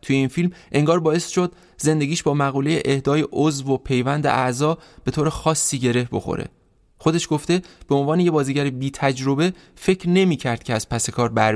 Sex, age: male, 20-39